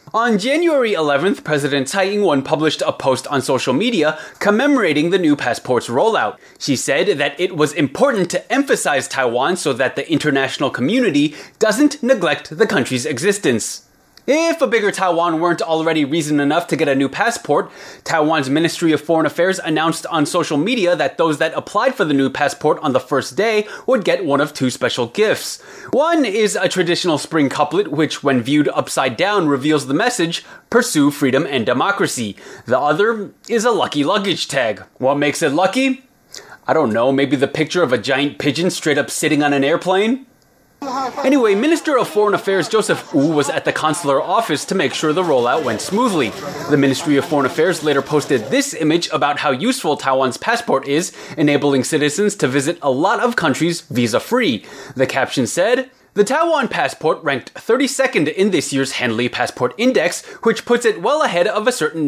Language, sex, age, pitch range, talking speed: English, male, 20-39, 145-220 Hz, 180 wpm